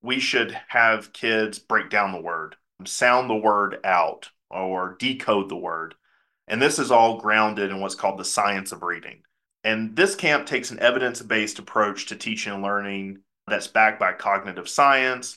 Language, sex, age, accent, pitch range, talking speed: English, male, 30-49, American, 105-120 Hz, 170 wpm